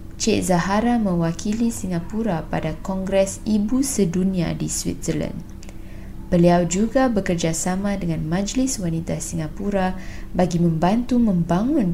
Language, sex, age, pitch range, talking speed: Malay, female, 20-39, 165-190 Hz, 100 wpm